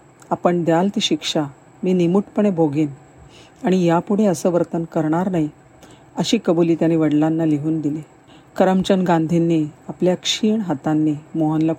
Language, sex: Marathi, female